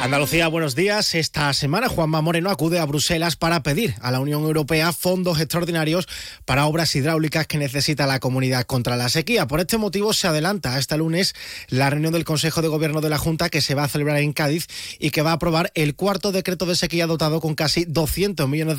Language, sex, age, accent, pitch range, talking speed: Spanish, male, 30-49, Spanish, 125-165 Hz, 210 wpm